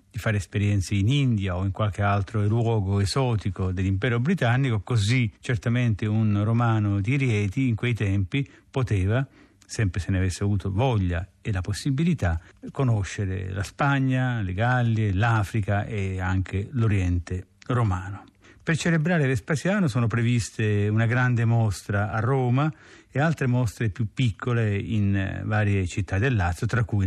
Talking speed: 140 wpm